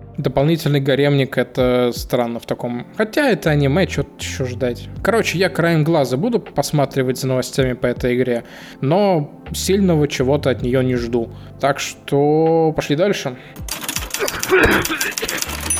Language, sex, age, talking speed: Russian, male, 20-39, 130 wpm